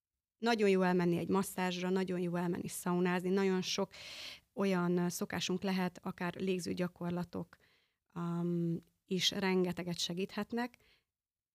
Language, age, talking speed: Hungarian, 30-49, 105 wpm